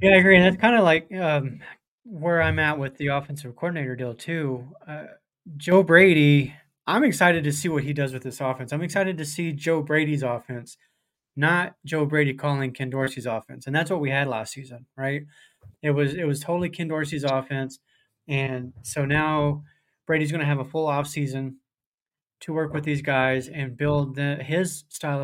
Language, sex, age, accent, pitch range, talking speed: English, male, 20-39, American, 135-155 Hz, 190 wpm